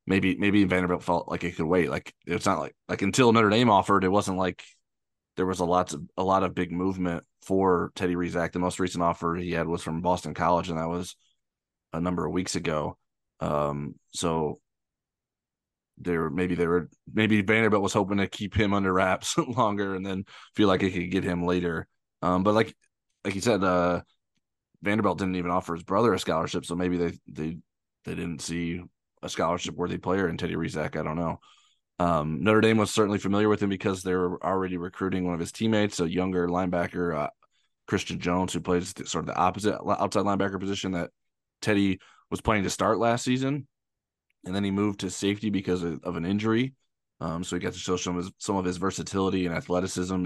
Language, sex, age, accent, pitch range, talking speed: English, male, 20-39, American, 85-100 Hz, 205 wpm